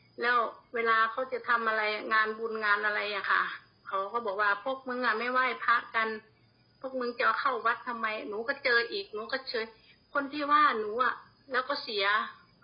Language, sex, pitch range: Thai, female, 220-255 Hz